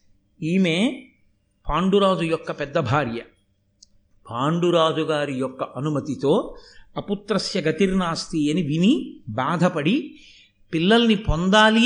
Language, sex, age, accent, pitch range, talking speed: Telugu, male, 50-69, native, 155-225 Hz, 75 wpm